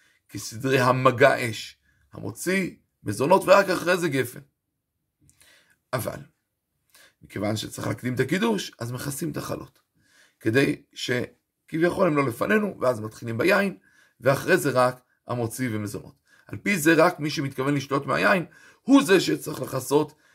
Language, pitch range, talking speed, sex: Hebrew, 125-170 Hz, 130 wpm, male